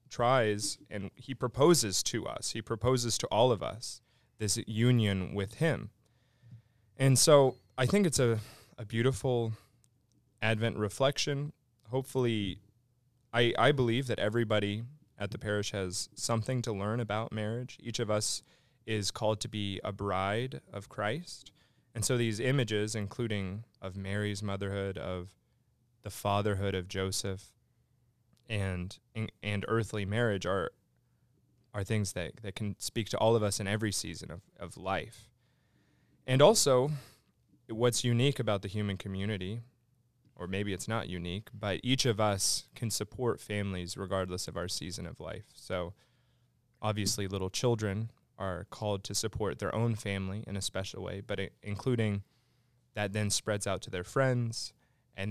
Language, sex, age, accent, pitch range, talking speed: English, male, 20-39, American, 100-120 Hz, 150 wpm